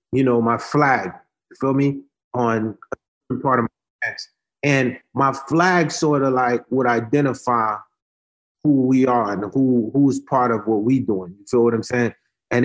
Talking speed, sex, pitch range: 180 wpm, male, 125-165 Hz